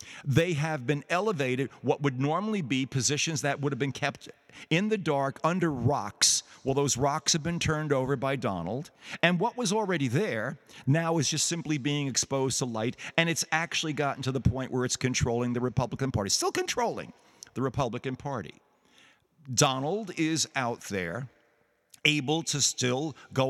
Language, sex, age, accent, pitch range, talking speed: English, male, 50-69, American, 120-150 Hz, 175 wpm